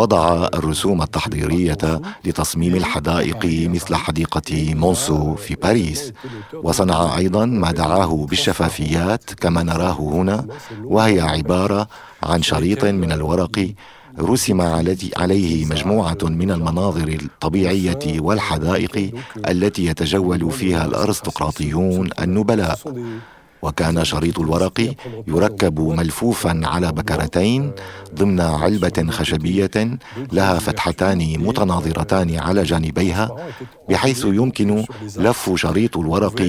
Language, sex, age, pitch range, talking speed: English, male, 50-69, 80-105 Hz, 90 wpm